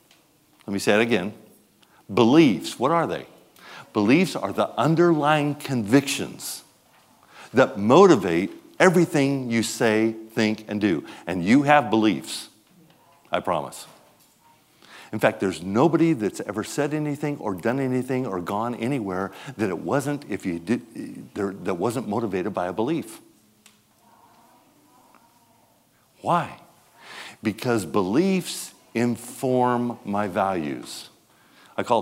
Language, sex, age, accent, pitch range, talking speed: English, male, 50-69, American, 105-145 Hz, 115 wpm